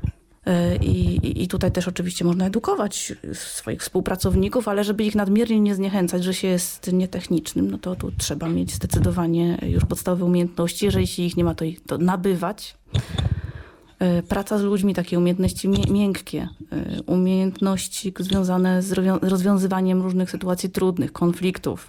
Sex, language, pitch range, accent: female, Polish, 170-195 Hz, native